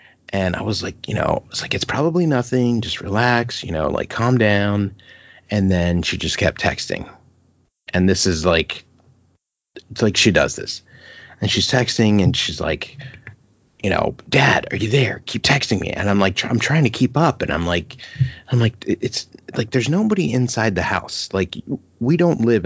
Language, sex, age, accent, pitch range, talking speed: English, male, 30-49, American, 95-120 Hz, 190 wpm